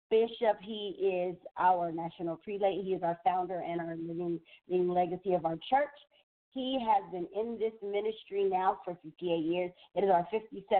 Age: 40-59